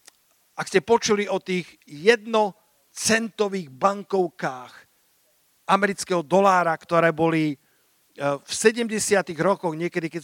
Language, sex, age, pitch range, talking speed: Slovak, male, 50-69, 170-205 Hz, 95 wpm